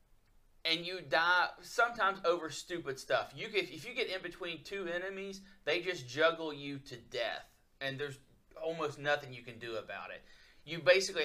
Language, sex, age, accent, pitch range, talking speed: English, male, 30-49, American, 125-170 Hz, 175 wpm